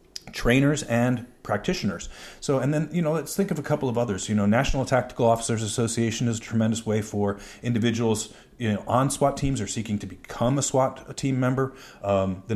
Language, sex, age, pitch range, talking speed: English, male, 40-59, 110-140 Hz, 200 wpm